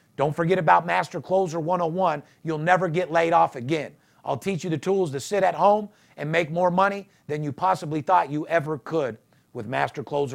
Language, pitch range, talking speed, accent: English, 170-215 Hz, 205 wpm, American